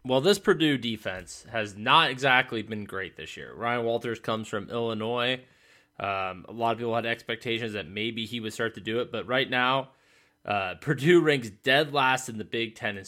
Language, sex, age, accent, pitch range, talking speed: English, male, 20-39, American, 110-135 Hz, 200 wpm